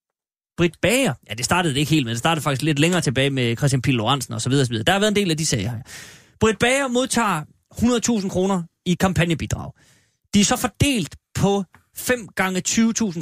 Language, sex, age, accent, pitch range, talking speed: Danish, male, 30-49, native, 135-190 Hz, 200 wpm